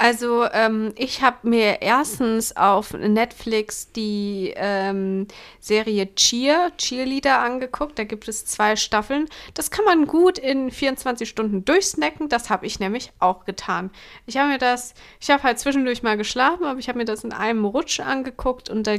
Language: German